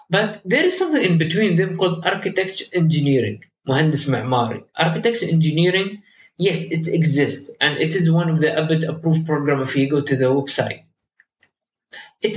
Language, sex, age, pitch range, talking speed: English, male, 20-39, 140-175 Hz, 160 wpm